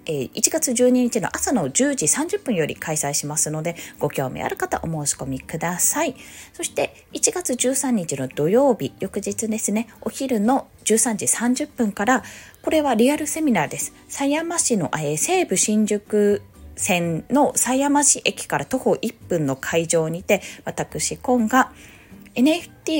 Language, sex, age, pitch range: Japanese, female, 20-39, 160-255 Hz